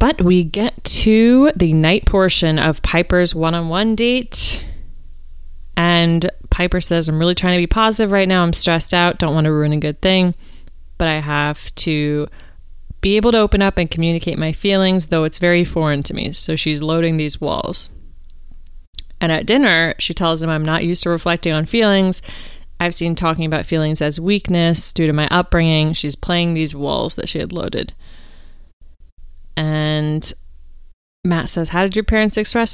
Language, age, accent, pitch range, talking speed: English, 30-49, American, 150-180 Hz, 175 wpm